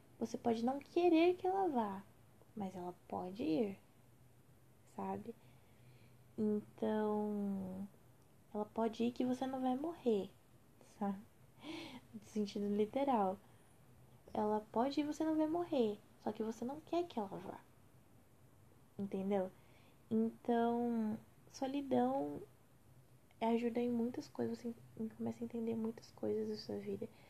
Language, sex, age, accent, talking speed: Portuguese, female, 10-29, Brazilian, 125 wpm